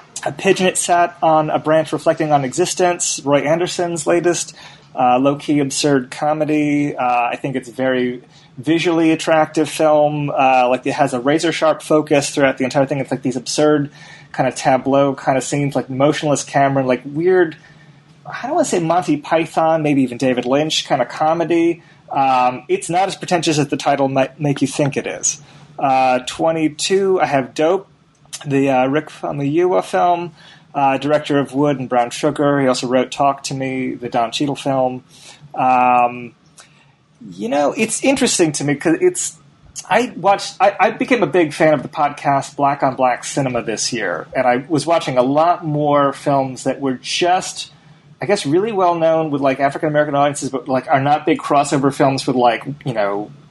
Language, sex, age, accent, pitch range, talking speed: English, male, 30-49, American, 135-160 Hz, 190 wpm